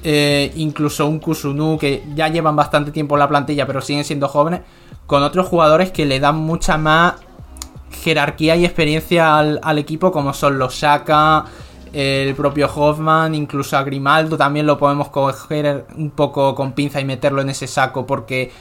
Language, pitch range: Spanish, 135-155 Hz